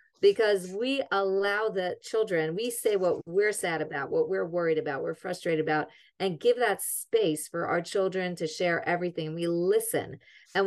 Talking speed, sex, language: 175 wpm, female, English